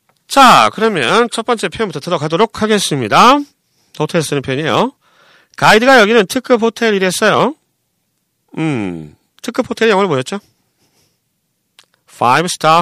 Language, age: Korean, 40-59